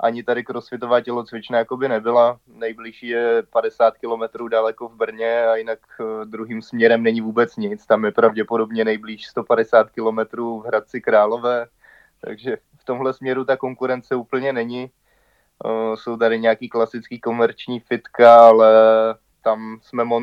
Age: 20-39